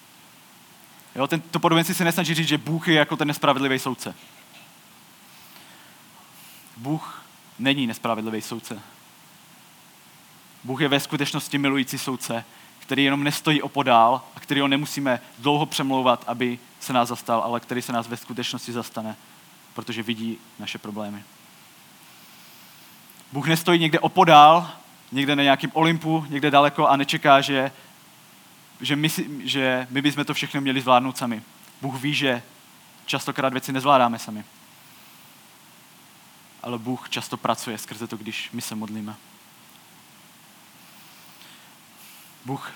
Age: 20-39